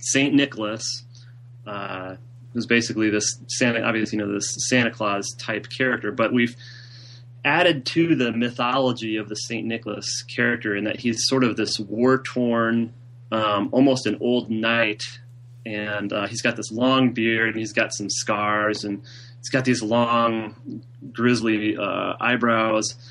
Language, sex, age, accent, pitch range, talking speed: English, male, 30-49, American, 105-125 Hz, 150 wpm